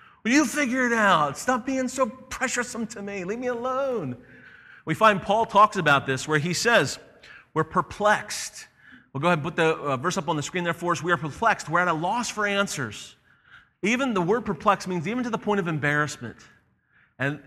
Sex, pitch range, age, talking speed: male, 140-180 Hz, 40-59, 205 wpm